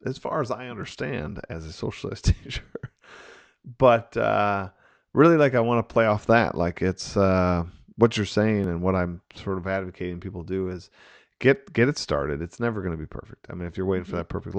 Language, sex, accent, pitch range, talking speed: English, male, American, 90-115 Hz, 215 wpm